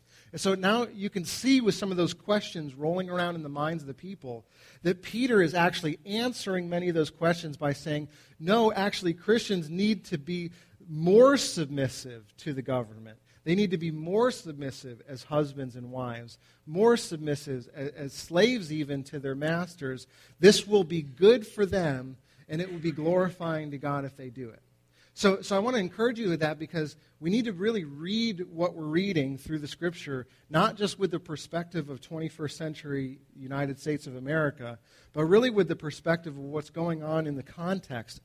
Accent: American